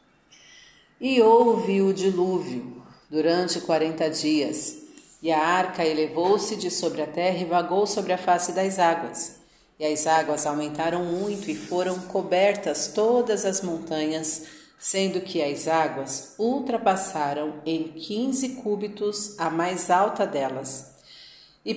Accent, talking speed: Brazilian, 125 wpm